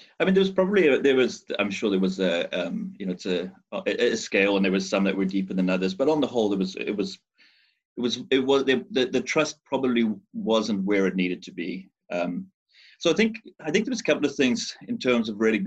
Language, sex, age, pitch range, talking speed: English, male, 30-49, 95-130 Hz, 265 wpm